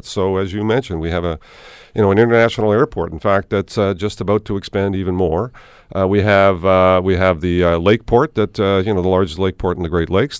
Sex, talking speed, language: male, 255 wpm, English